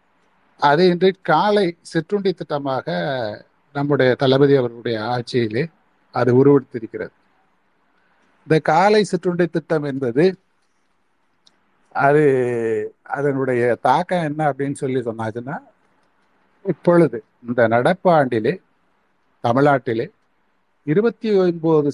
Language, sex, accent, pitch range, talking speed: Tamil, male, native, 125-160 Hz, 80 wpm